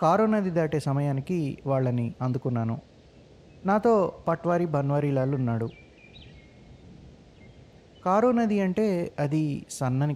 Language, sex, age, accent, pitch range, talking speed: Telugu, male, 30-49, native, 125-155 Hz, 90 wpm